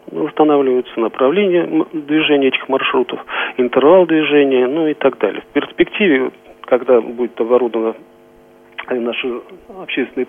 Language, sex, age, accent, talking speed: Russian, male, 40-59, native, 105 wpm